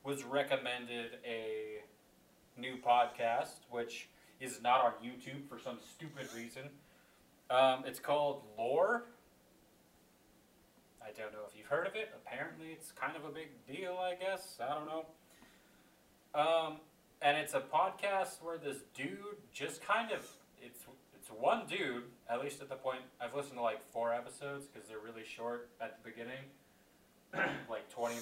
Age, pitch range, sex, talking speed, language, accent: 30-49, 120-155 Hz, male, 155 wpm, English, American